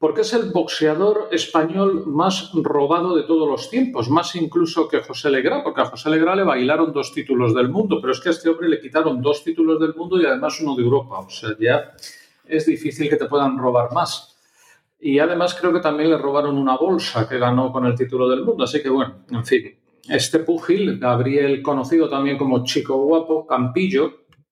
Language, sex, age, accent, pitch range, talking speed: Spanish, male, 40-59, Spanish, 135-175 Hz, 205 wpm